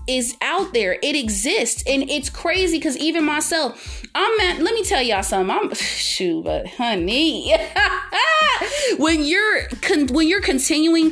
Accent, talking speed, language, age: American, 145 wpm, English, 30-49